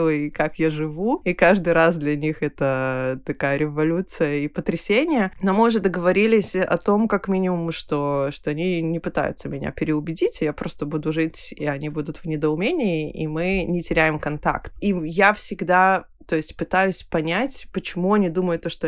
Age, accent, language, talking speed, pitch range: 20-39, native, Russian, 175 wpm, 155-190 Hz